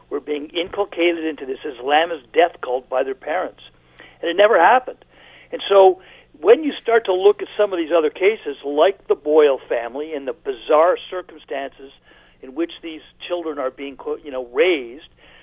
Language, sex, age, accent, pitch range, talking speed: English, male, 50-69, American, 150-190 Hz, 180 wpm